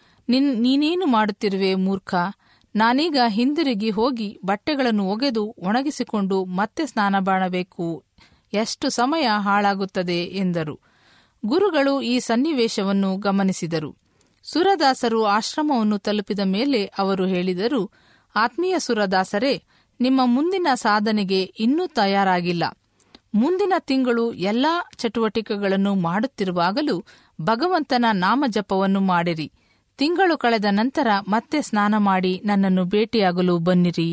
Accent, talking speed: native, 90 wpm